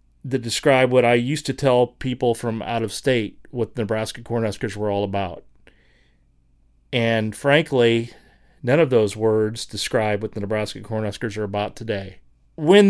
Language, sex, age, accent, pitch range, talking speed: English, male, 30-49, American, 105-130 Hz, 155 wpm